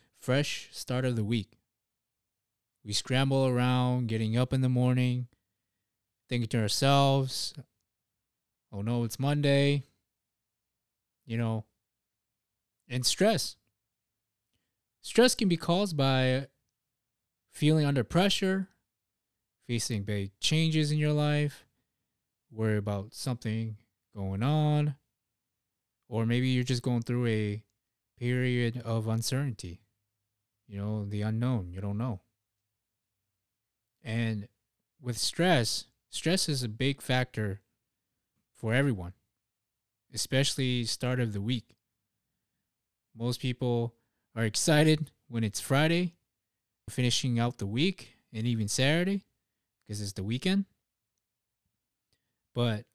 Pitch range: 110-130 Hz